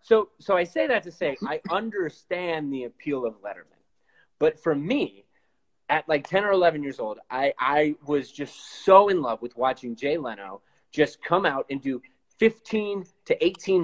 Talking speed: 180 wpm